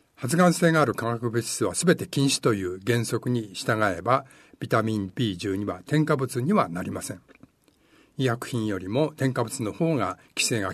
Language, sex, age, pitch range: Japanese, male, 60-79, 115-145 Hz